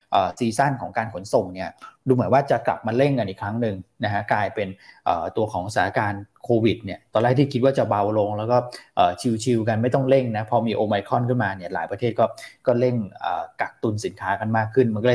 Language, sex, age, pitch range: Thai, male, 20-39, 105-130 Hz